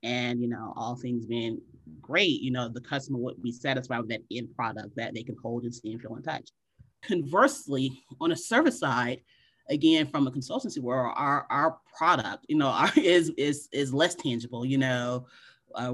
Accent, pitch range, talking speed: American, 125-145 Hz, 195 wpm